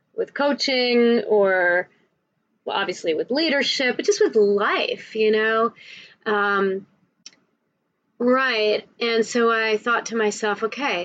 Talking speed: 120 wpm